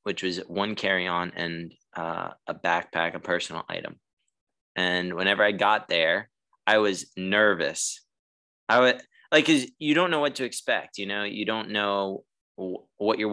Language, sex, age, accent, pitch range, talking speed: English, male, 20-39, American, 90-105 Hz, 160 wpm